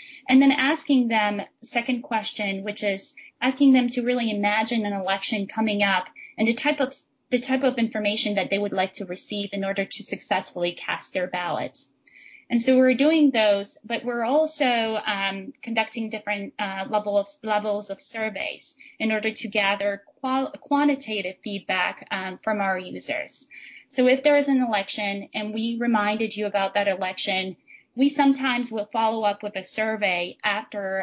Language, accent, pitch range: English, American, 200-245 Hz